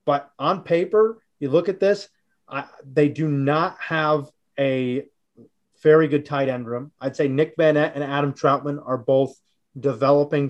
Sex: male